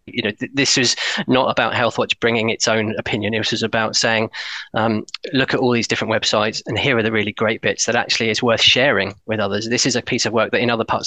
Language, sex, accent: English, male, British